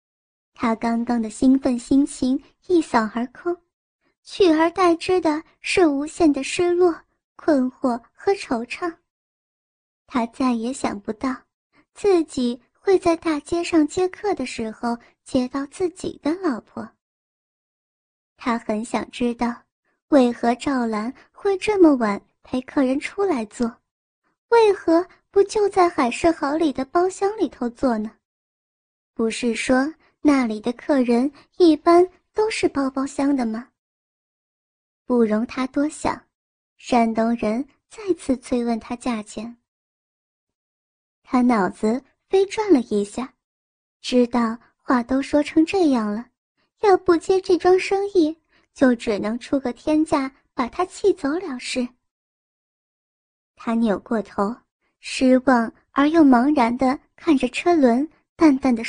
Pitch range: 240-340 Hz